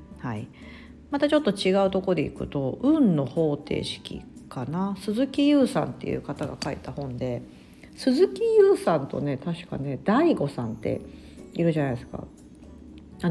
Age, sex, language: 40-59, female, Japanese